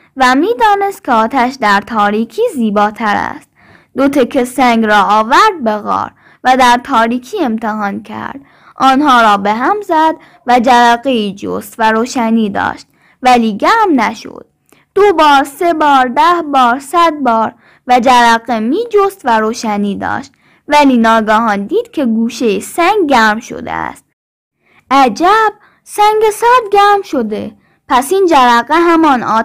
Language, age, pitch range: Persian, 10-29, 220-315 Hz